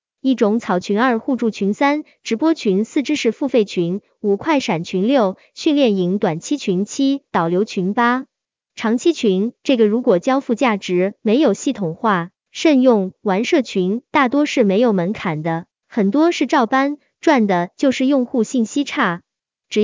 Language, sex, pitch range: Chinese, male, 195-275 Hz